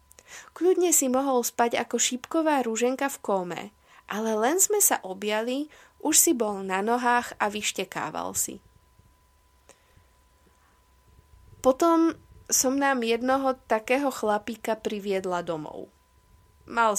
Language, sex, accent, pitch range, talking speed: Czech, female, native, 180-230 Hz, 110 wpm